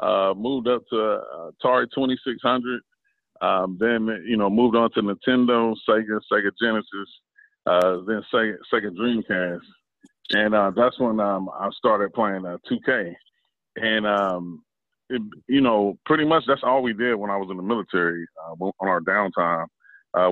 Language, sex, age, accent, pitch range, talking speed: English, male, 30-49, American, 90-115 Hz, 155 wpm